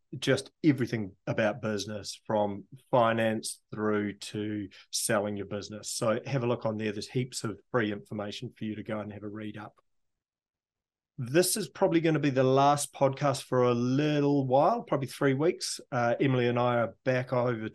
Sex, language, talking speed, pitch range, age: male, English, 185 wpm, 105-130 Hz, 30-49